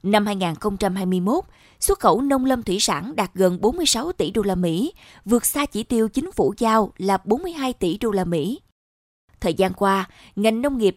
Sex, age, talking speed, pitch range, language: female, 20-39, 185 wpm, 190-245 Hz, Vietnamese